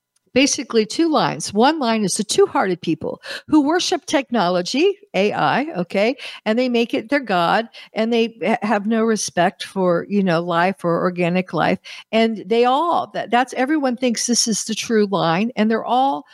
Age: 60-79